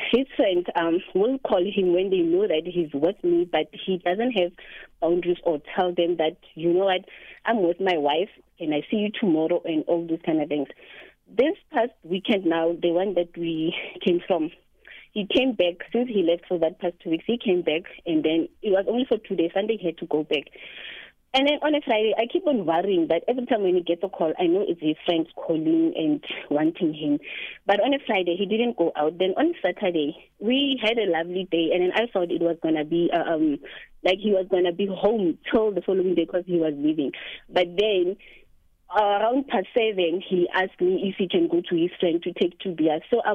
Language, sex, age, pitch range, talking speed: English, female, 30-49, 165-210 Hz, 230 wpm